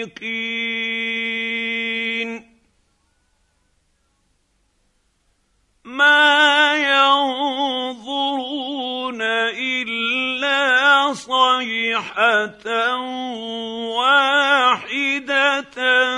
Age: 50-69